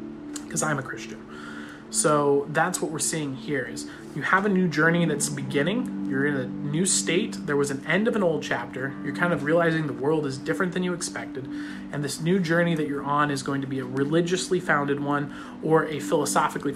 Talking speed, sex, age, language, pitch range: 215 wpm, male, 30-49, English, 135-160 Hz